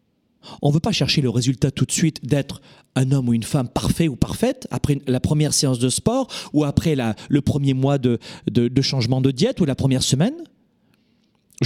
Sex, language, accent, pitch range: male, French, French, 120-175 Hz